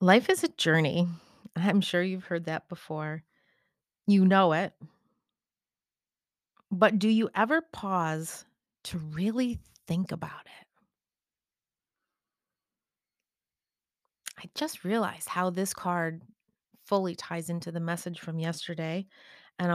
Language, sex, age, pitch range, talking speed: English, female, 30-49, 170-210 Hz, 110 wpm